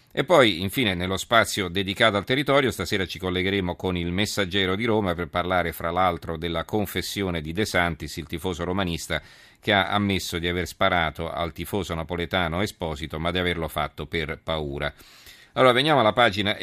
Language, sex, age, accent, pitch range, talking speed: Italian, male, 40-59, native, 85-100 Hz, 175 wpm